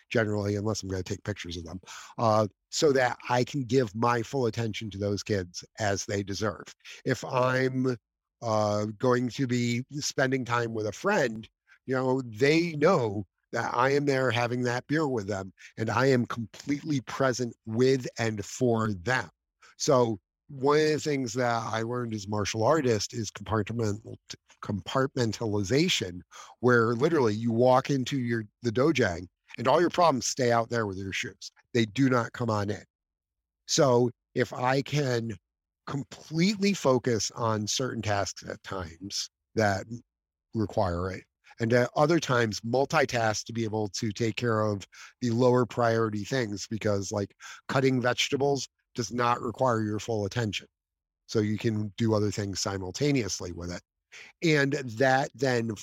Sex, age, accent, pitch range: male, 50-69, American, 105-130 Hz